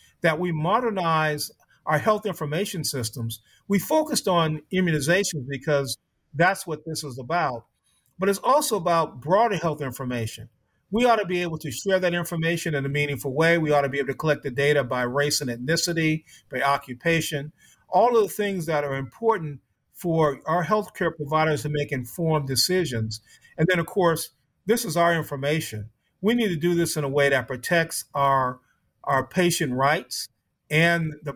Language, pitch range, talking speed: English, 140-175 Hz, 175 wpm